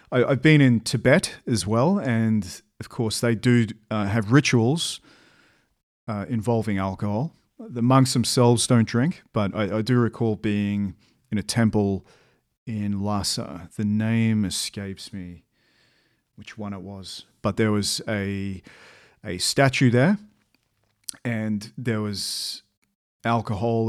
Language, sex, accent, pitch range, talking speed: English, male, Australian, 105-125 Hz, 130 wpm